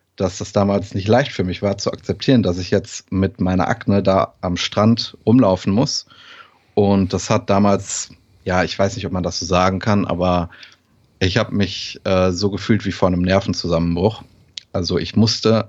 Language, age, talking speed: German, 30-49, 185 wpm